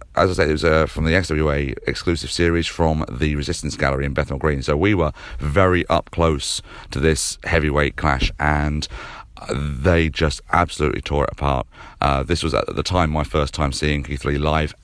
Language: English